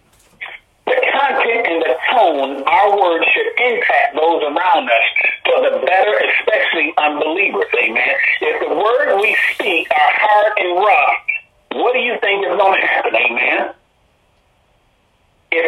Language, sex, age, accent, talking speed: English, male, 50-69, American, 140 wpm